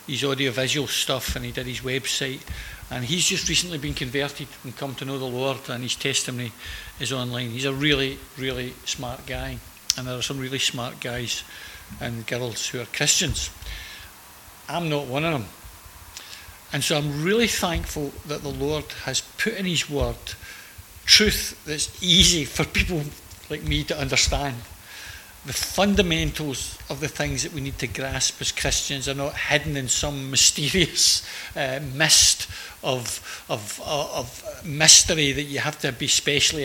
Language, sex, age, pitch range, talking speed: English, male, 60-79, 130-155 Hz, 165 wpm